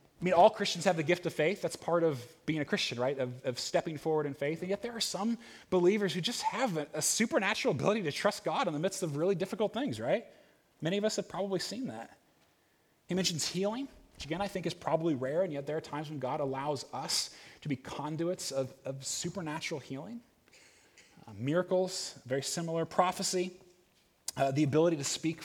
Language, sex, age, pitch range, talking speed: English, male, 20-39, 145-190 Hz, 210 wpm